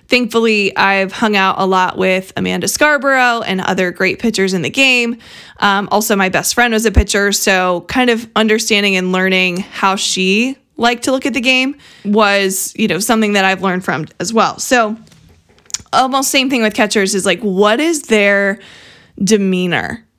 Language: English